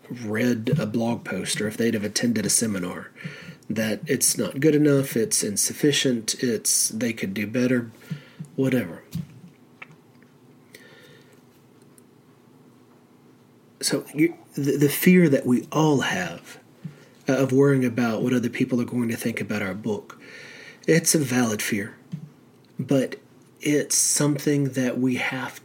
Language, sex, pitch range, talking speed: English, male, 120-140 Hz, 130 wpm